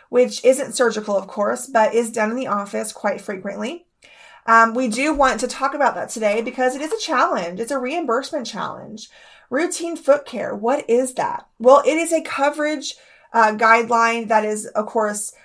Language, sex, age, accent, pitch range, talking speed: English, female, 30-49, American, 210-255 Hz, 185 wpm